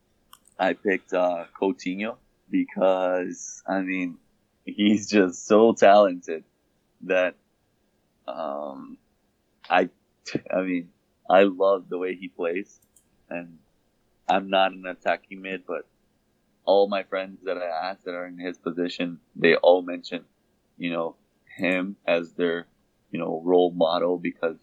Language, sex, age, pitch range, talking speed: Swedish, male, 20-39, 85-95 Hz, 130 wpm